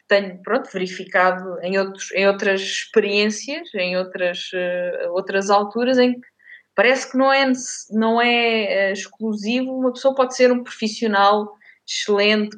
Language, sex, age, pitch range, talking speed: Portuguese, female, 20-39, 200-255 Hz, 120 wpm